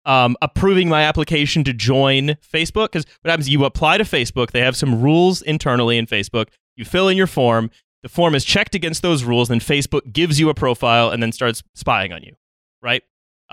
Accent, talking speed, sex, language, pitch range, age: American, 200 wpm, male, English, 115-160 Hz, 30-49